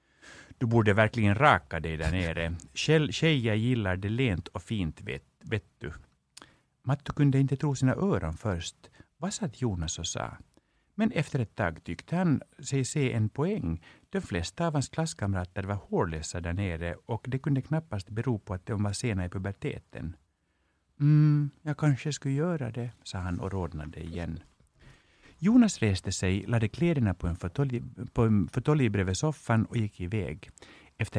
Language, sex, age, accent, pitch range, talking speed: English, male, 60-79, Finnish, 90-140 Hz, 165 wpm